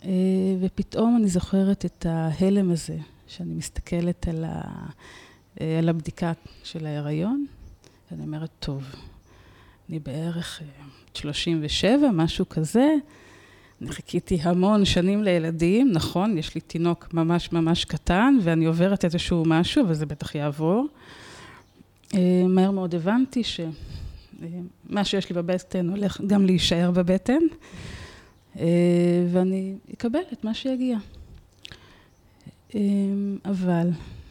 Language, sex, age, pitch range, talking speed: Hebrew, female, 30-49, 155-190 Hz, 110 wpm